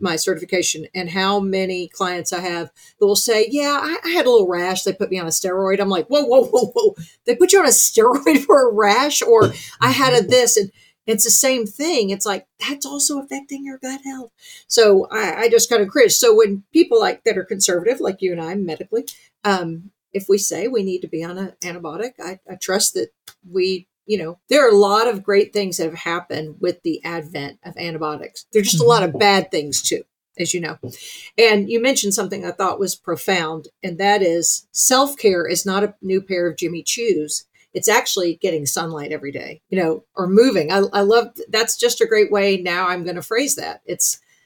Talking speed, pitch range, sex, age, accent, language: 225 wpm, 175-230 Hz, female, 50-69, American, English